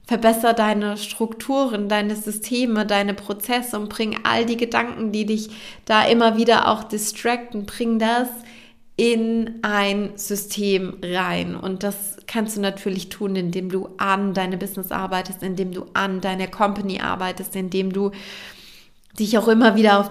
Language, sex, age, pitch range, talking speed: German, female, 20-39, 200-225 Hz, 150 wpm